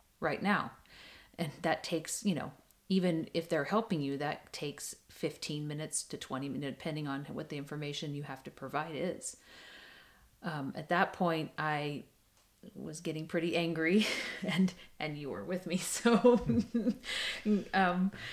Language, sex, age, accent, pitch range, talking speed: English, female, 40-59, American, 150-180 Hz, 150 wpm